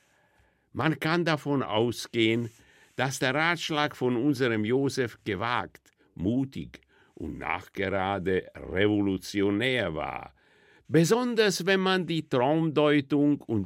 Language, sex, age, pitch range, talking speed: German, male, 60-79, 110-150 Hz, 95 wpm